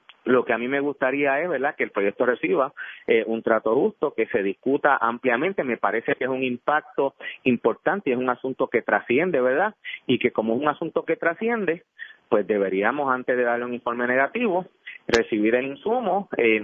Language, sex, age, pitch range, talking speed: Spanish, male, 30-49, 115-145 Hz, 195 wpm